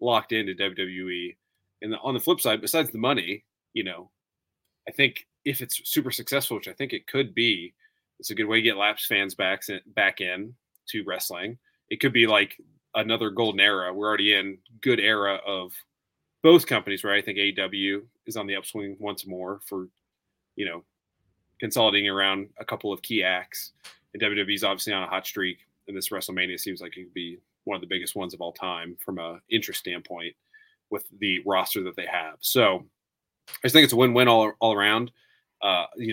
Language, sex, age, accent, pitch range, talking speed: English, male, 30-49, American, 95-120 Hz, 200 wpm